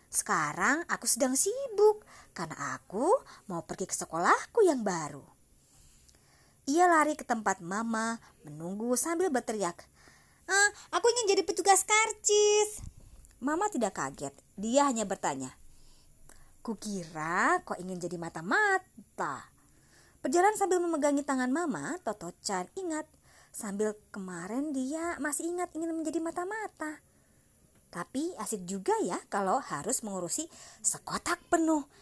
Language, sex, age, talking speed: Indonesian, male, 30-49, 115 wpm